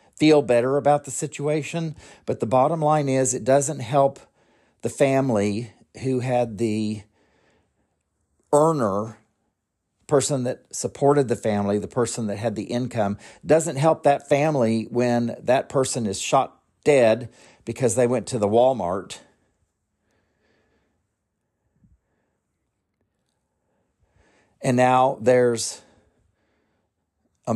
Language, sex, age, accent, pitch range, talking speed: English, male, 50-69, American, 105-135 Hz, 110 wpm